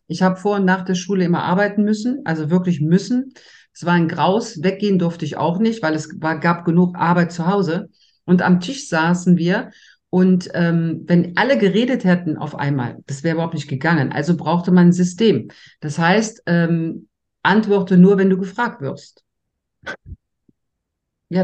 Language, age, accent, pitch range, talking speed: German, 50-69, German, 165-195 Hz, 175 wpm